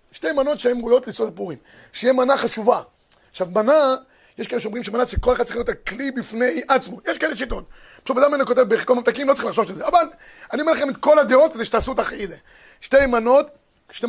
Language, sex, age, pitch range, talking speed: Hebrew, male, 30-49, 235-285 Hz, 215 wpm